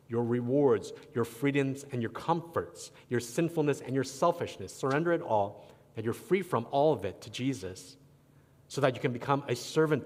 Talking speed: 185 wpm